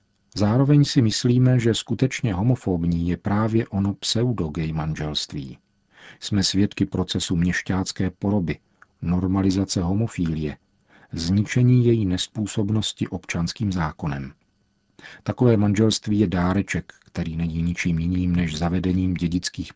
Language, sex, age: Czech, male, 50-69